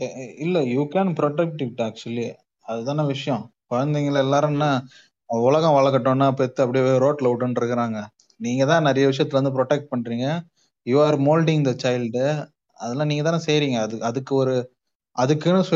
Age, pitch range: 20-39, 130-170 Hz